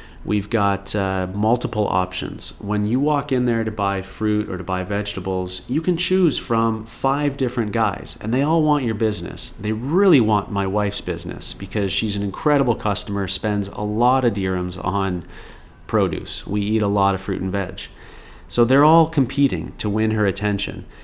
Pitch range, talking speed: 95-120 Hz, 185 wpm